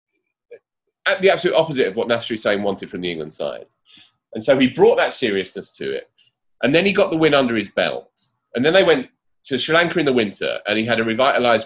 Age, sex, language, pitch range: 30-49, male, English, 110-170 Hz